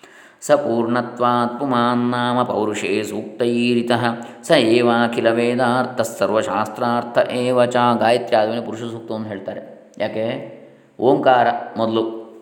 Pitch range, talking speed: 110-120 Hz, 90 wpm